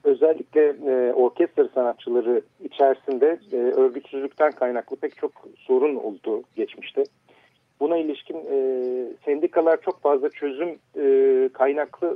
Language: Turkish